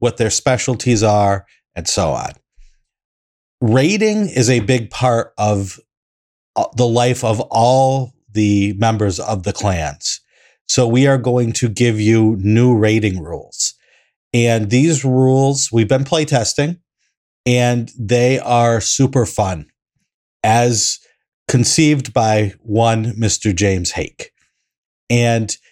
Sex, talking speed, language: male, 120 wpm, English